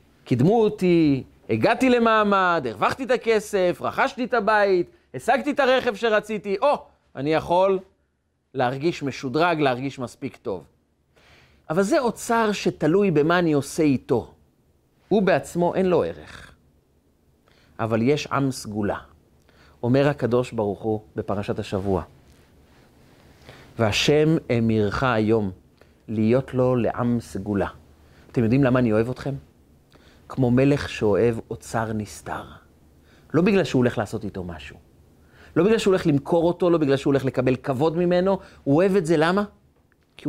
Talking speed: 135 wpm